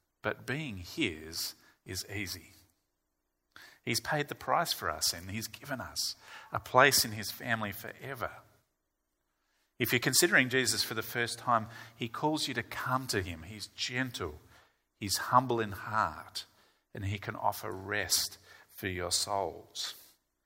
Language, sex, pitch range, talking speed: English, male, 90-120 Hz, 145 wpm